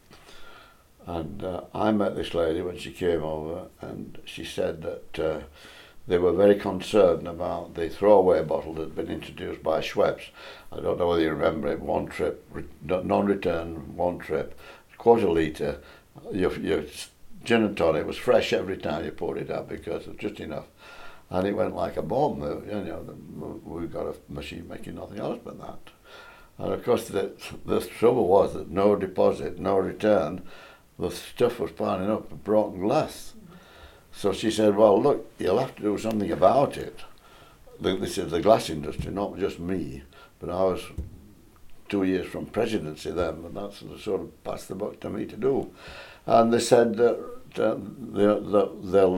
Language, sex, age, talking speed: English, male, 60-79, 180 wpm